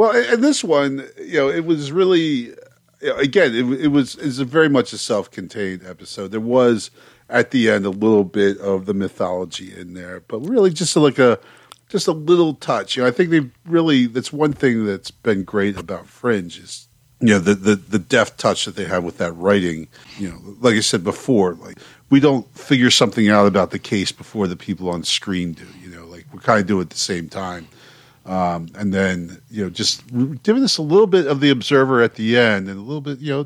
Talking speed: 230 wpm